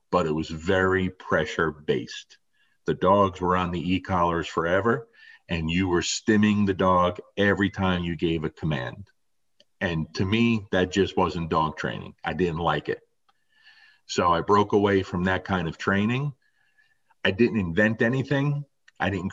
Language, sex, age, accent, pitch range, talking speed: English, male, 40-59, American, 90-115 Hz, 160 wpm